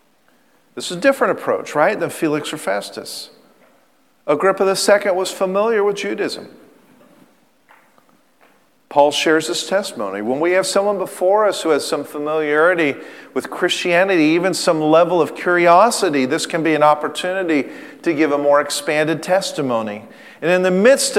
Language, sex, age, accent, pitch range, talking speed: English, male, 50-69, American, 140-190 Hz, 145 wpm